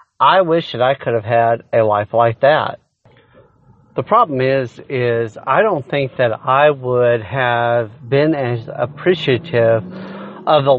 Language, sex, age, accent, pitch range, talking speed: English, male, 40-59, American, 120-145 Hz, 150 wpm